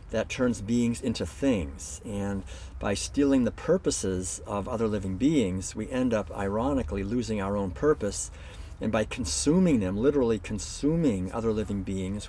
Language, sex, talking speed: English, male, 150 wpm